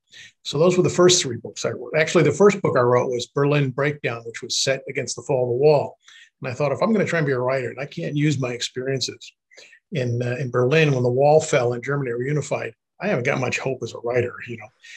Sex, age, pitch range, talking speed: male, 50-69, 125-150 Hz, 270 wpm